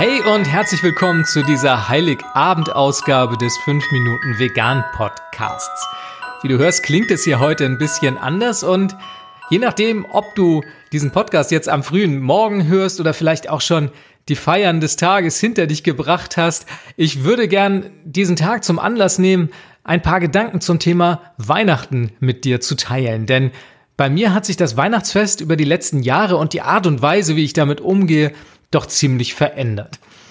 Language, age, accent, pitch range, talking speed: German, 40-59, German, 140-185 Hz, 170 wpm